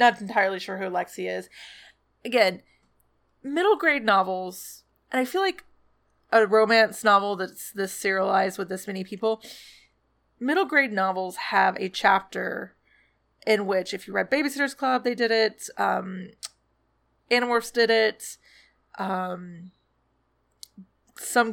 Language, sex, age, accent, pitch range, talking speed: English, female, 20-39, American, 195-240 Hz, 130 wpm